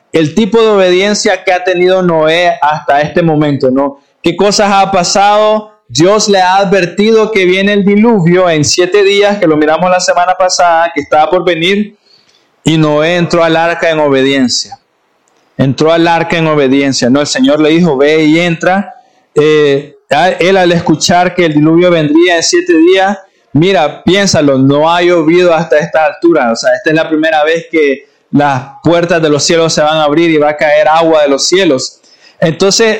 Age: 20-39